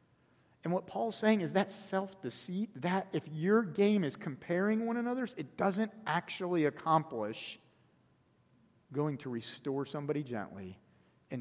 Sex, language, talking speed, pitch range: male, English, 130 wpm, 110-180 Hz